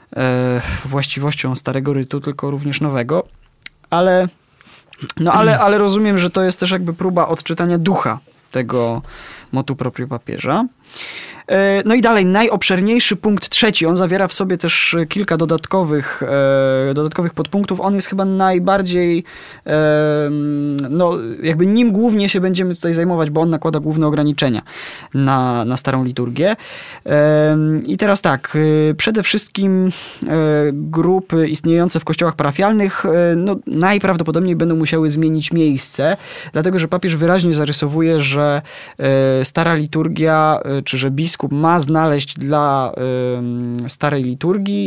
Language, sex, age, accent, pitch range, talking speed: Polish, male, 20-39, native, 145-185 Hz, 125 wpm